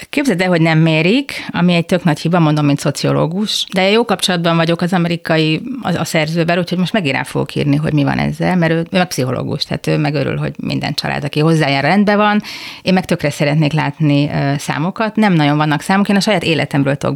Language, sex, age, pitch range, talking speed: Hungarian, female, 30-49, 155-190 Hz, 220 wpm